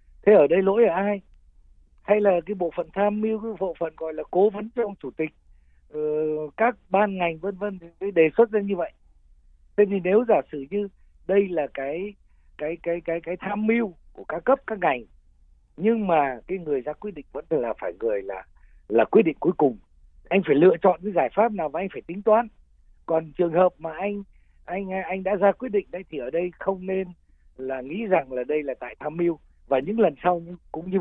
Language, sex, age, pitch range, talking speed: Vietnamese, male, 60-79, 140-200 Hz, 230 wpm